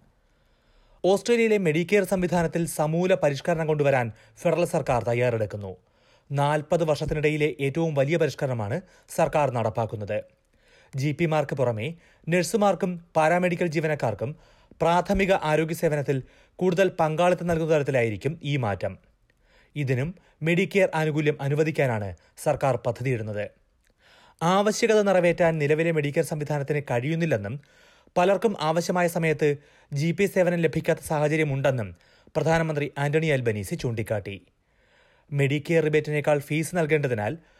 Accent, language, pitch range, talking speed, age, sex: native, Malayalam, 135-170 Hz, 95 wpm, 30-49, male